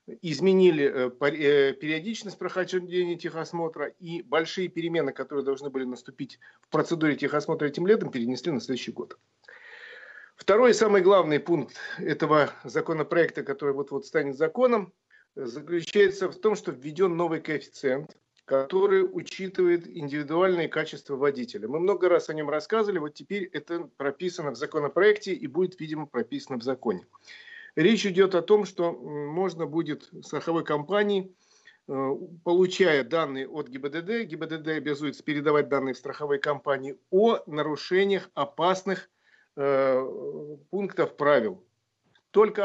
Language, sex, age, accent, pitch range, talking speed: Russian, male, 50-69, native, 140-190 Hz, 120 wpm